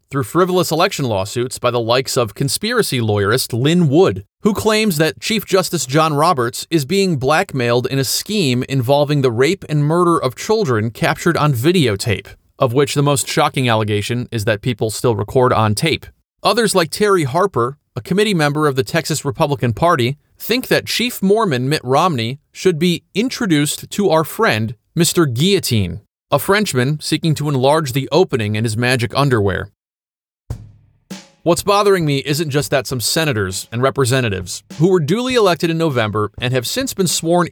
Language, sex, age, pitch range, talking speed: English, male, 30-49, 120-170 Hz, 170 wpm